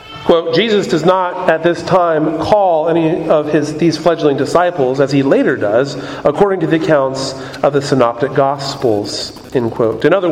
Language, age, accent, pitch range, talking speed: English, 40-59, American, 145-185 Hz, 175 wpm